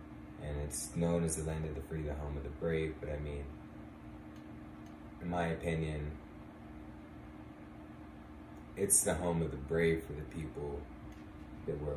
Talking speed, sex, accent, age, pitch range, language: 155 wpm, male, American, 20-39, 75-80 Hz, English